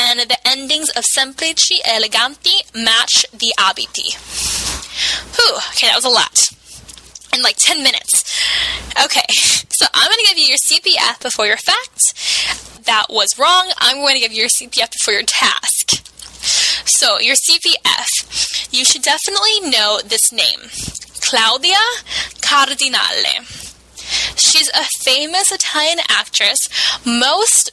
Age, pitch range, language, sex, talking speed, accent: 10-29, 225-310 Hz, Italian, female, 130 wpm, American